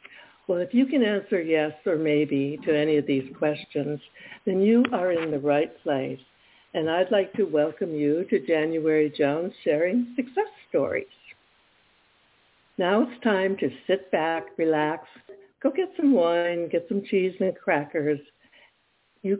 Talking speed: 150 wpm